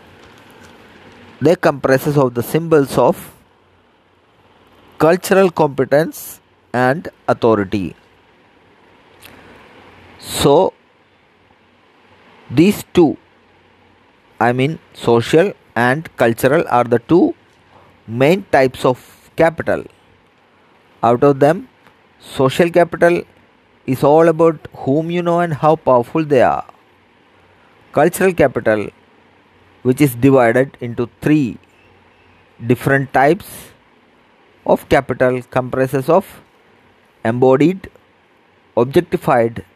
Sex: male